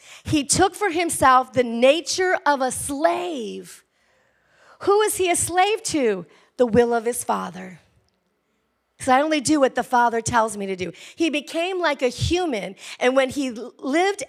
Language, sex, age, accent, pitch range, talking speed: English, female, 40-59, American, 240-310 Hz, 170 wpm